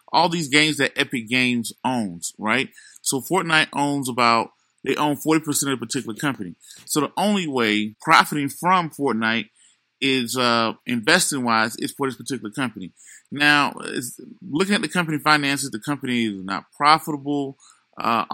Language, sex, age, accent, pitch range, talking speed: English, male, 20-39, American, 115-140 Hz, 150 wpm